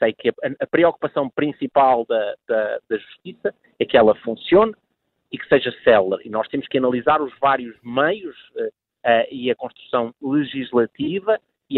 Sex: male